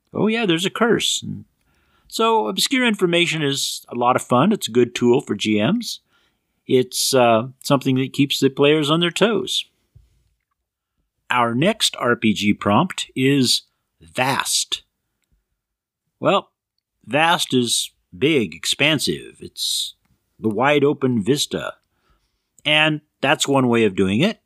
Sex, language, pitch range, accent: male, English, 110-135 Hz, American